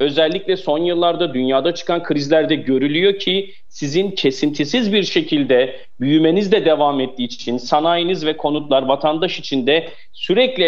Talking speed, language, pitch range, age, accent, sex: 135 wpm, Turkish, 140-200 Hz, 40-59, native, male